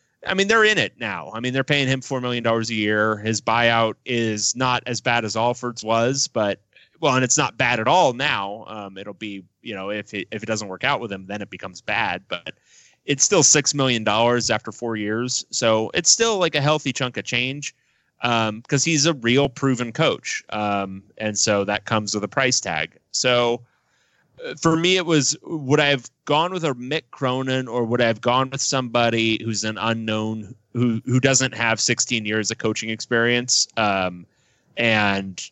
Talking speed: 200 wpm